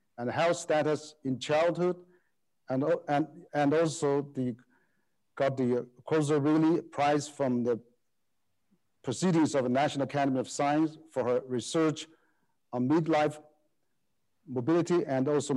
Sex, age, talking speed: male, 50-69, 125 wpm